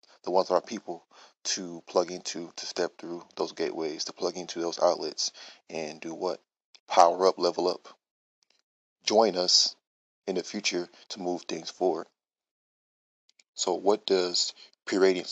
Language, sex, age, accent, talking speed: English, male, 30-49, American, 150 wpm